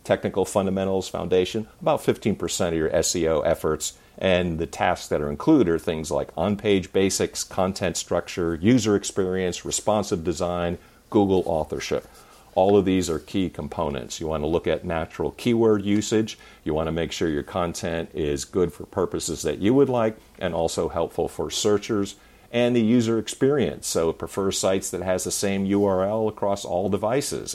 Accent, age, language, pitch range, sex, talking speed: American, 50-69, English, 90-115 Hz, male, 170 wpm